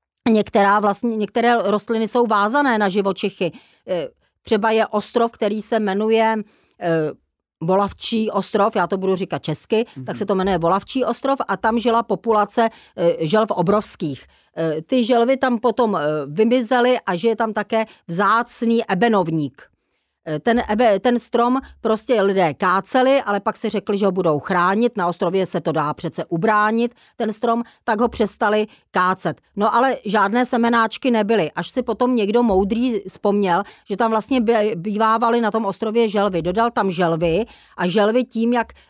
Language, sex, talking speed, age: Czech, female, 150 wpm, 40-59